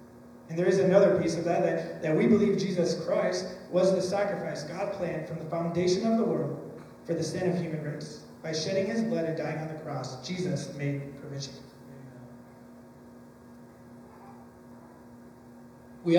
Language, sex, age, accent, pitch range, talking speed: English, male, 30-49, American, 140-200 Hz, 160 wpm